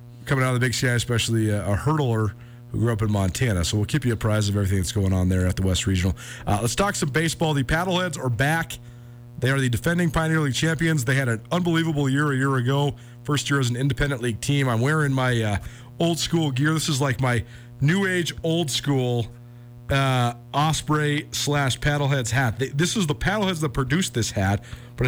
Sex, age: male, 40-59